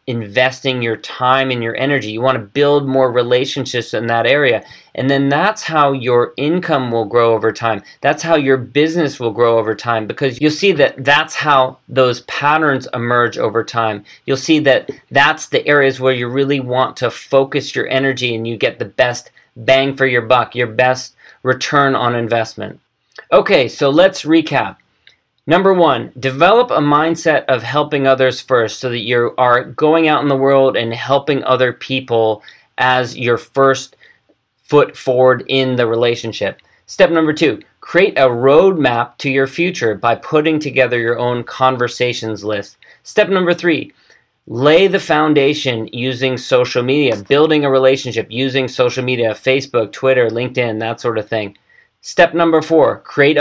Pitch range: 120-145 Hz